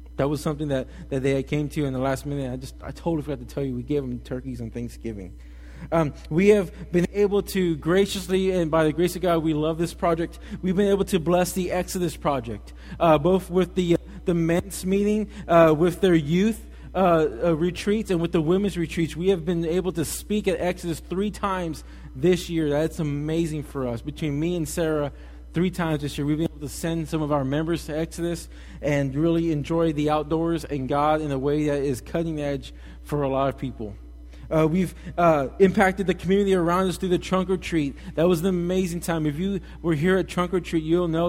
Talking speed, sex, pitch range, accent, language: 220 wpm, male, 145-180 Hz, American, English